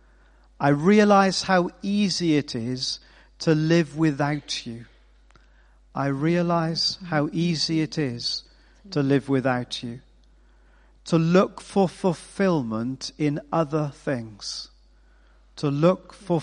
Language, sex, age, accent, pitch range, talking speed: English, male, 50-69, British, 130-175 Hz, 110 wpm